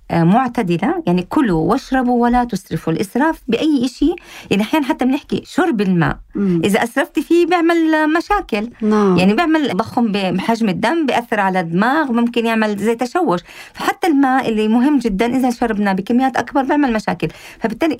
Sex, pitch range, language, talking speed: female, 205-265 Hz, Arabic, 145 wpm